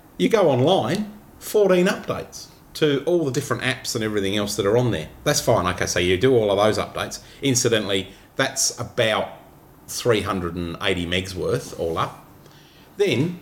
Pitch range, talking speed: 100-145 Hz, 160 wpm